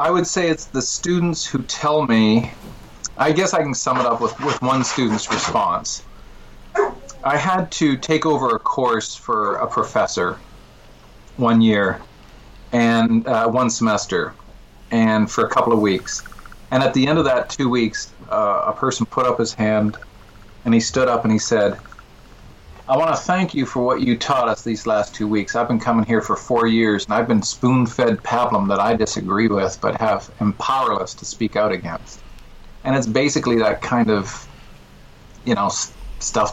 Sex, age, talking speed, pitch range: male, 40-59, 185 wpm, 105-130 Hz